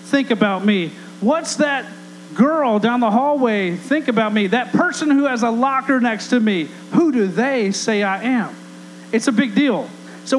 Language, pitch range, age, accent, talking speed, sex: English, 210-275 Hz, 40-59, American, 185 wpm, male